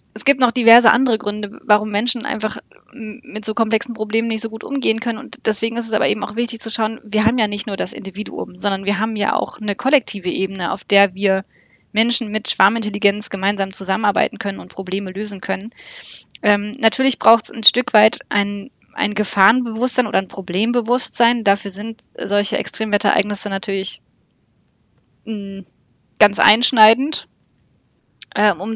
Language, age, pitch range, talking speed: German, 20-39, 200-225 Hz, 160 wpm